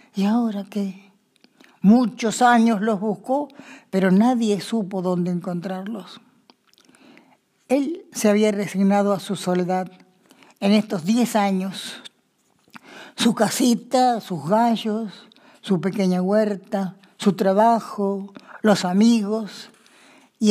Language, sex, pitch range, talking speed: Spanish, female, 190-235 Hz, 100 wpm